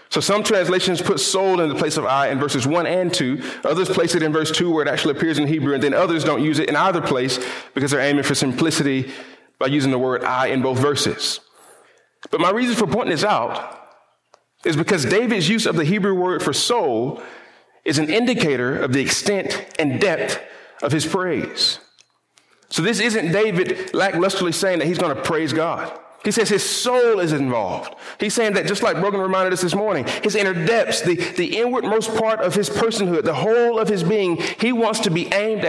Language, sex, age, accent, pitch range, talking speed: English, male, 30-49, American, 140-210 Hz, 210 wpm